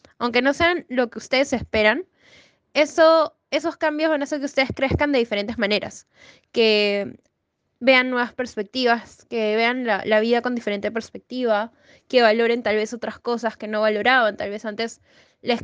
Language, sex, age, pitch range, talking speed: English, female, 10-29, 220-250 Hz, 170 wpm